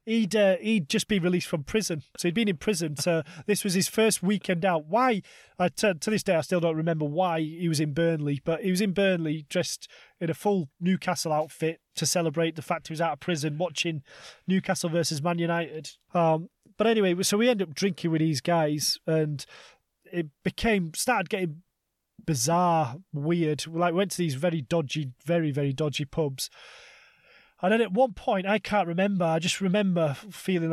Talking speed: 195 wpm